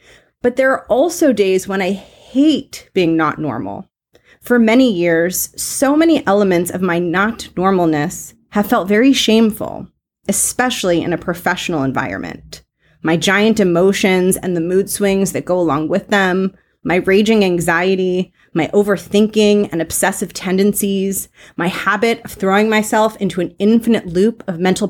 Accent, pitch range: American, 175-225 Hz